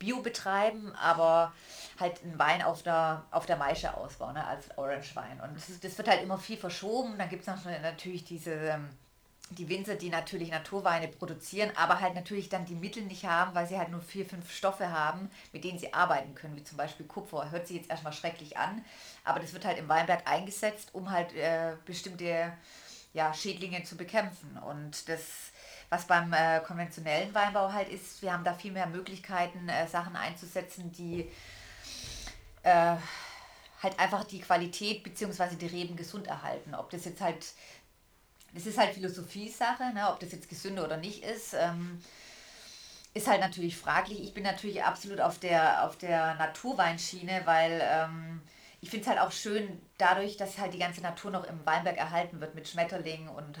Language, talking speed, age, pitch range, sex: German, 180 wpm, 30-49, 165-195 Hz, female